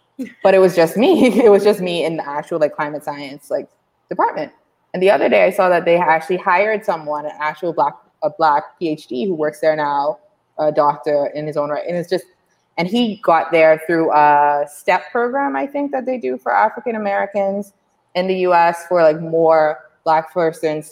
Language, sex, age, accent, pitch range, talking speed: English, female, 20-39, American, 150-185 Hz, 200 wpm